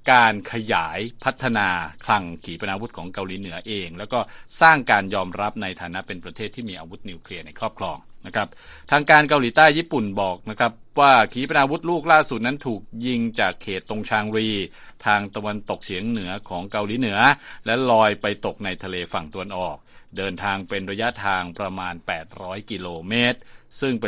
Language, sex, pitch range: Thai, male, 95-125 Hz